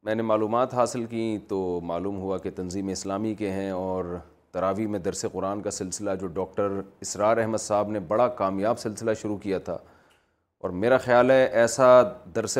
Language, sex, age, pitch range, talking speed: Urdu, male, 30-49, 100-130 Hz, 180 wpm